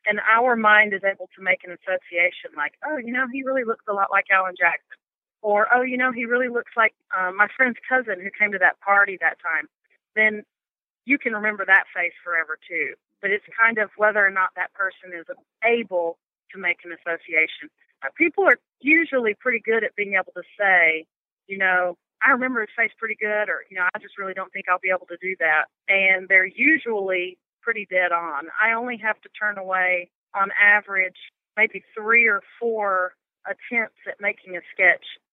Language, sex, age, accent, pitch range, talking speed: English, female, 40-59, American, 185-225 Hz, 200 wpm